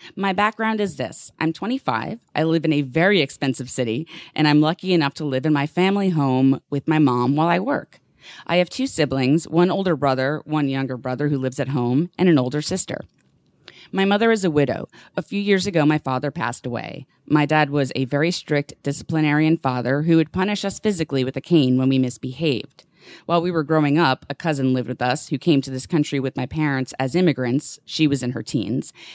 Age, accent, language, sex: 30-49, American, English, female